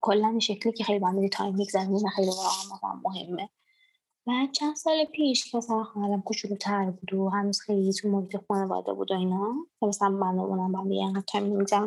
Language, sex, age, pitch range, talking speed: Persian, female, 20-39, 205-290 Hz, 195 wpm